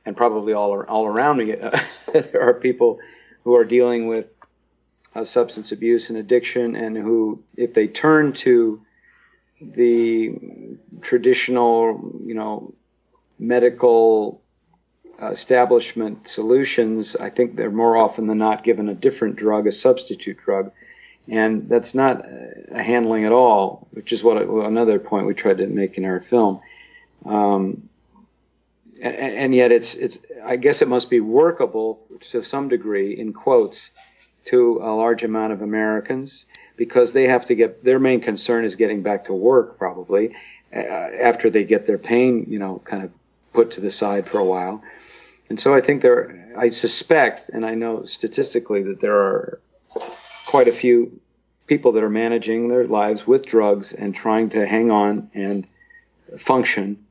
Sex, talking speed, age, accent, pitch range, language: male, 160 wpm, 40-59, American, 110-135 Hz, English